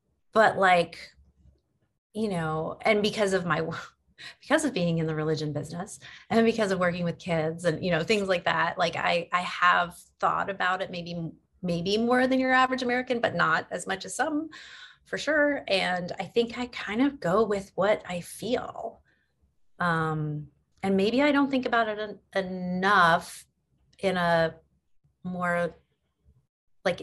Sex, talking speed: female, 165 wpm